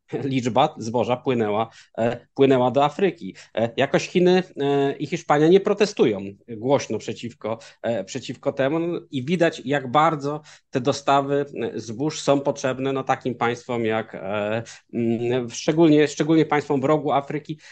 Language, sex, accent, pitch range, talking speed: Polish, male, native, 120-145 Hz, 120 wpm